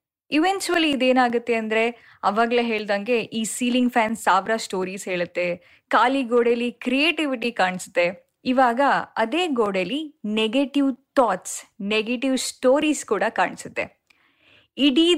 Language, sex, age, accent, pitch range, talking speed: Kannada, female, 10-29, native, 205-275 Hz, 100 wpm